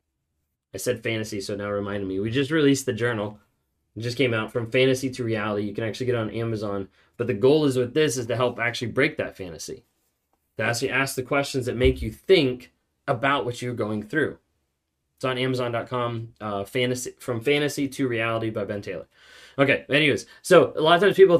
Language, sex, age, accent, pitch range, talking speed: English, male, 20-39, American, 120-160 Hz, 210 wpm